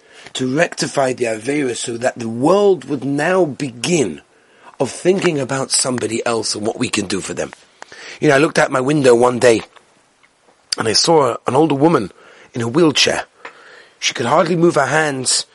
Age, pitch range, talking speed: 30-49, 130-180 Hz, 180 wpm